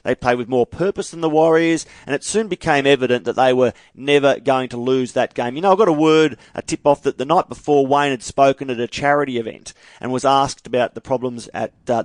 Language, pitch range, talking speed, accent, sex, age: English, 125-155 Hz, 245 wpm, Australian, male, 40-59